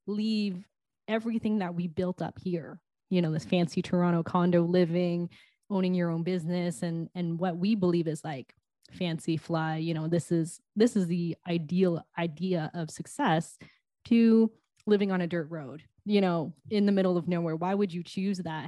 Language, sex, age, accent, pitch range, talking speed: English, female, 10-29, American, 165-195 Hz, 180 wpm